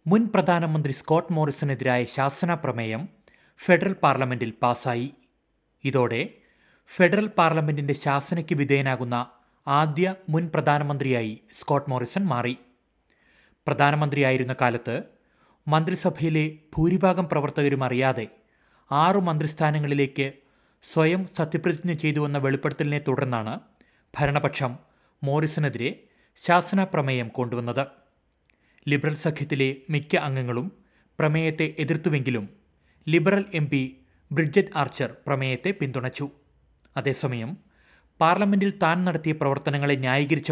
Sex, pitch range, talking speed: male, 130-165 Hz, 80 wpm